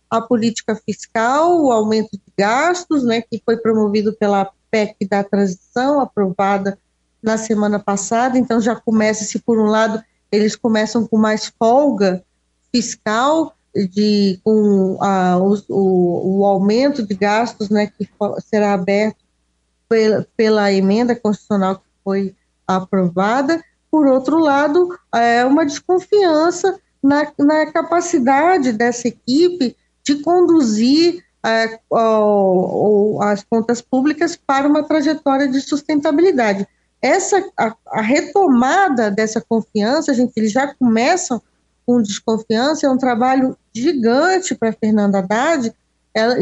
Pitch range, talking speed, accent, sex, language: 215-300 Hz, 125 wpm, Brazilian, female, Portuguese